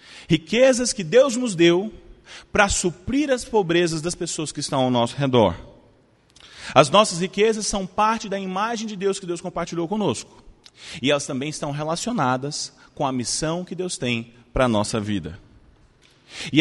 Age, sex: 30-49, male